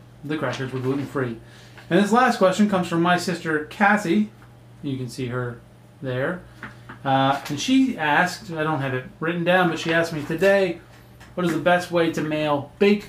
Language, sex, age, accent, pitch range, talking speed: English, male, 30-49, American, 120-155 Hz, 190 wpm